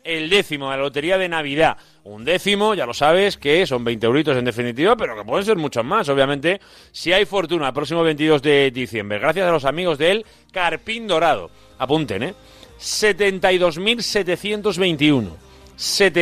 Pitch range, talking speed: 125-165 Hz, 165 wpm